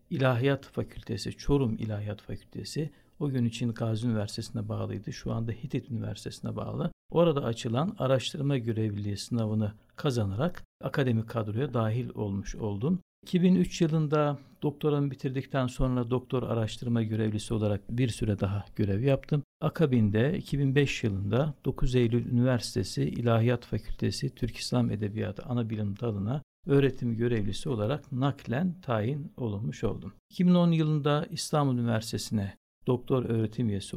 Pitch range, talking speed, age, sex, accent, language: 110-140 Hz, 120 wpm, 60-79, male, native, Turkish